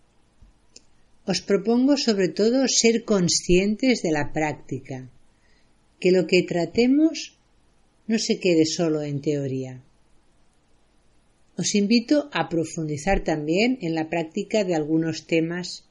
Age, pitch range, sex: 50-69, 145-200 Hz, female